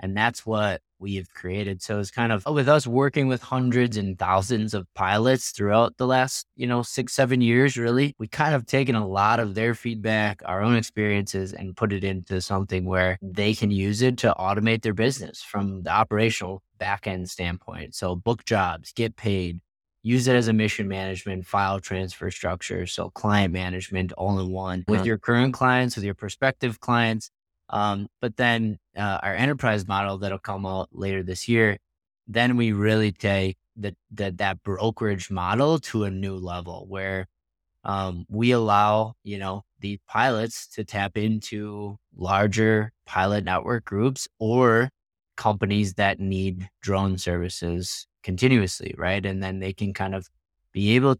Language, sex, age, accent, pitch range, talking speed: English, male, 20-39, American, 95-115 Hz, 170 wpm